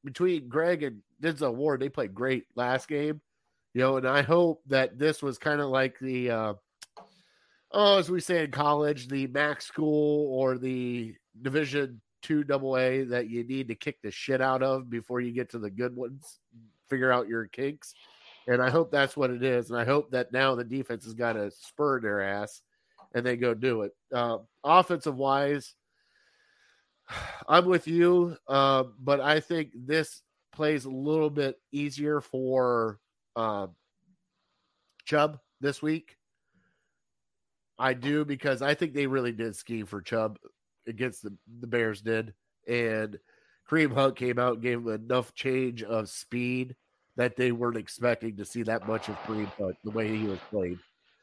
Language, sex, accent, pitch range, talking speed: English, male, American, 115-145 Hz, 175 wpm